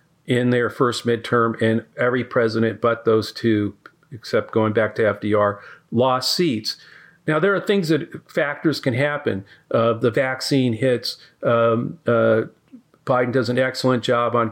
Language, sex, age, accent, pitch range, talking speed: English, male, 50-69, American, 115-135 Hz, 155 wpm